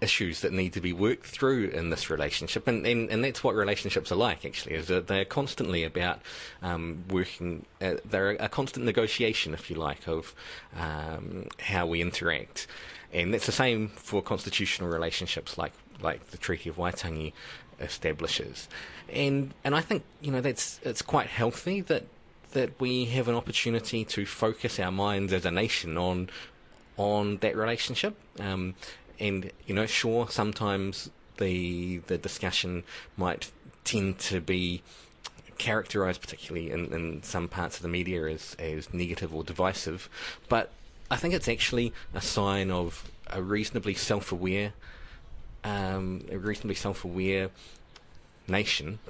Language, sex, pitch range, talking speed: English, male, 90-115 Hz, 155 wpm